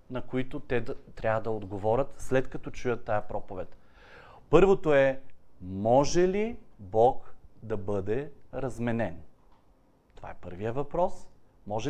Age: 40-59